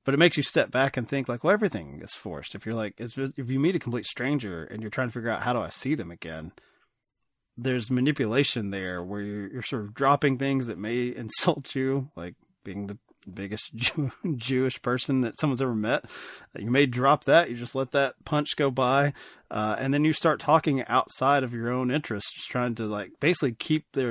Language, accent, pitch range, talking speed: English, American, 100-135 Hz, 225 wpm